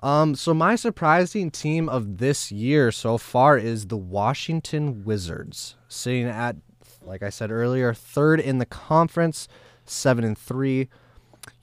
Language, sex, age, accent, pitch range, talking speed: English, male, 20-39, American, 110-135 Hz, 140 wpm